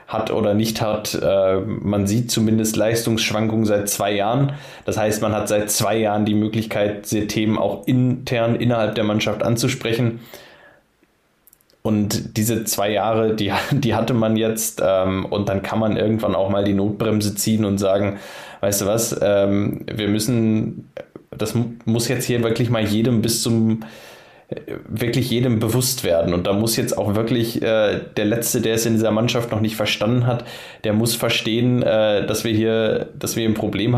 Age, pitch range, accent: 20-39, 105-120 Hz, German